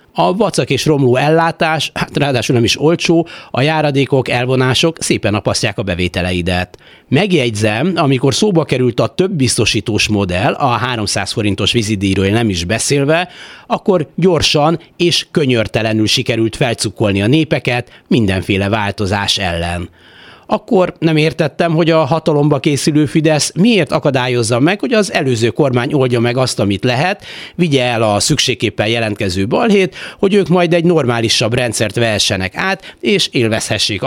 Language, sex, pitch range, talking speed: Hungarian, male, 105-160 Hz, 140 wpm